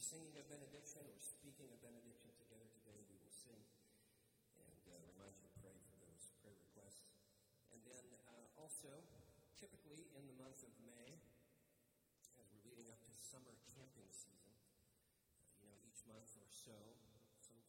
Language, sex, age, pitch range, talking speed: English, male, 40-59, 105-125 Hz, 165 wpm